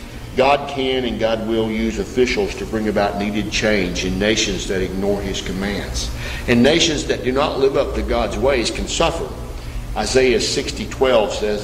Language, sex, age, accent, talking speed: English, male, 50-69, American, 165 wpm